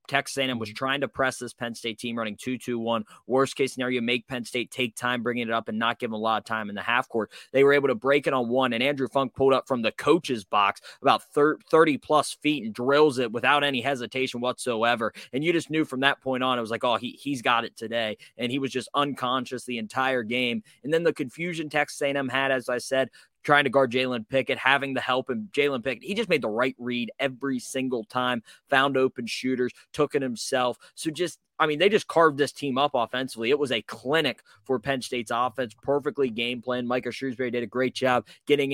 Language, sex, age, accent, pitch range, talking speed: English, male, 20-39, American, 120-140 Hz, 230 wpm